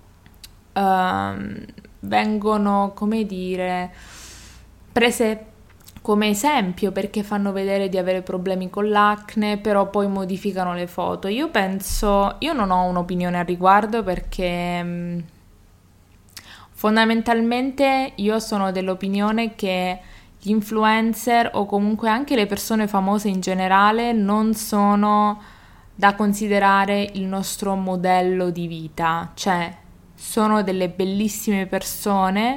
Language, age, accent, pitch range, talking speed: Italian, 20-39, native, 185-215 Hz, 105 wpm